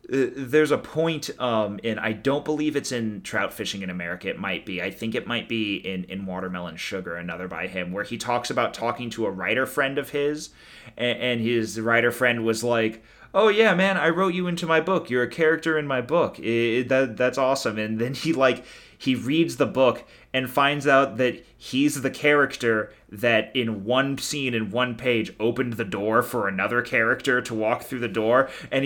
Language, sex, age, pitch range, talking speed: English, male, 30-49, 115-155 Hz, 205 wpm